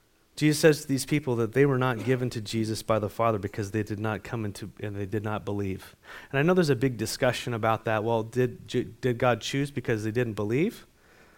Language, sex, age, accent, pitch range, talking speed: English, male, 30-49, American, 115-155 Hz, 230 wpm